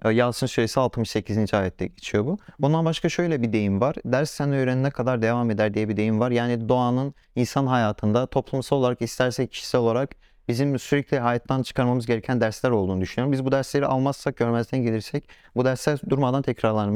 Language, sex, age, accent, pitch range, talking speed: Turkish, male, 40-59, native, 110-140 Hz, 175 wpm